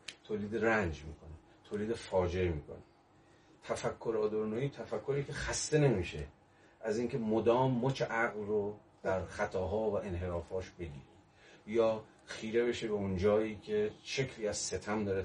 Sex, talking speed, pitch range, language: male, 130 wpm, 85-110 Hz, Persian